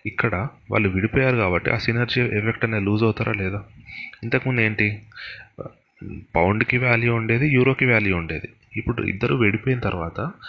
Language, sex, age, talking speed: Telugu, male, 30-49, 130 wpm